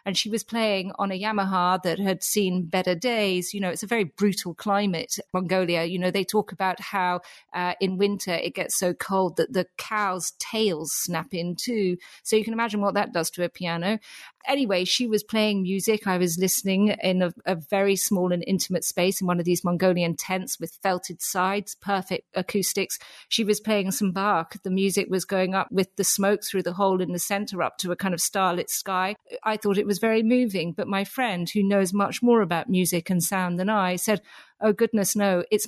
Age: 40-59